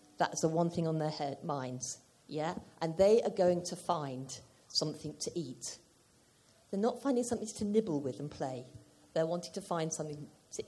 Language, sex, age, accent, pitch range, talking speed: English, female, 50-69, British, 150-210 Hz, 185 wpm